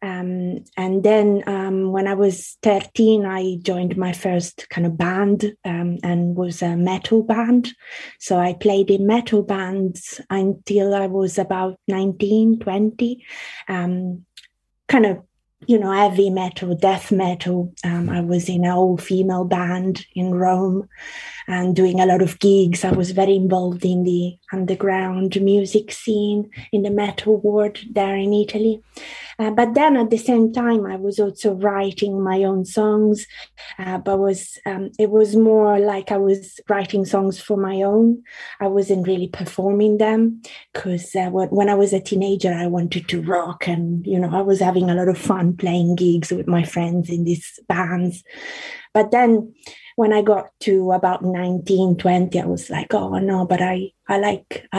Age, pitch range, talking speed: 20-39, 180-210 Hz, 170 wpm